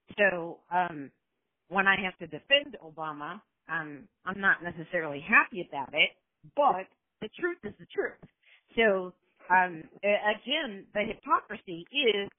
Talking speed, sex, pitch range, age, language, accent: 130 wpm, female, 170-230 Hz, 40-59, English, American